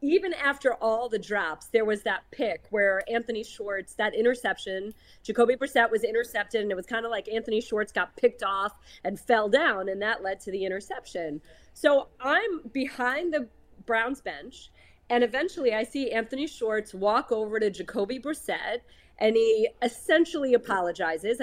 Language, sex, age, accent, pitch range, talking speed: English, female, 30-49, American, 205-260 Hz, 165 wpm